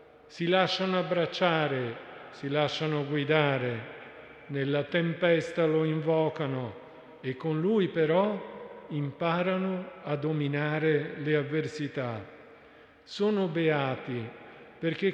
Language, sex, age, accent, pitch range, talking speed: Italian, male, 50-69, native, 140-170 Hz, 85 wpm